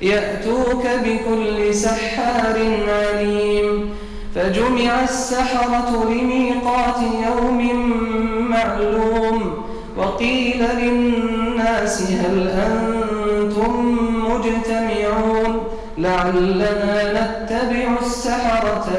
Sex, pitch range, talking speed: male, 210-235 Hz, 55 wpm